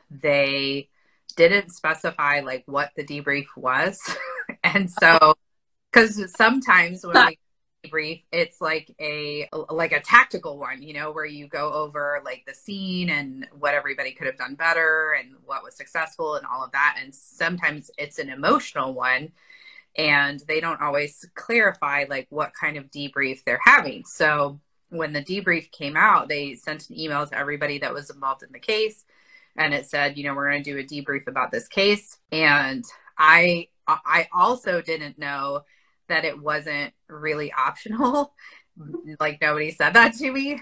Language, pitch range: English, 145-195 Hz